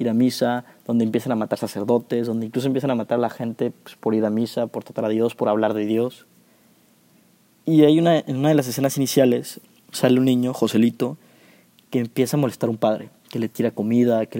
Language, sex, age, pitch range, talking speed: Spanish, male, 20-39, 115-130 Hz, 220 wpm